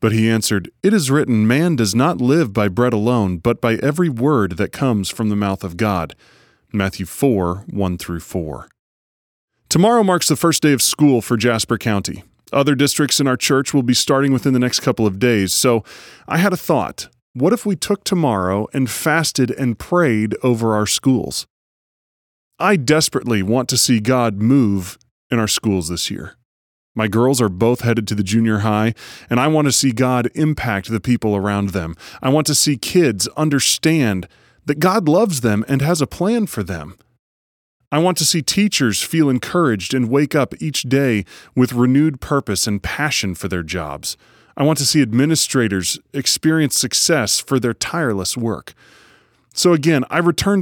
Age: 30-49